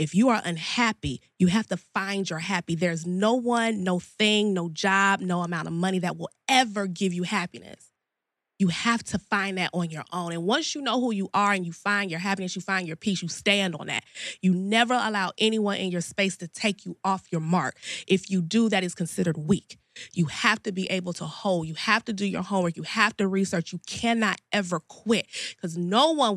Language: English